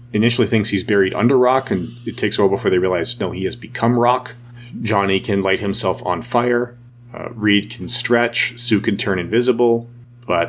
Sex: male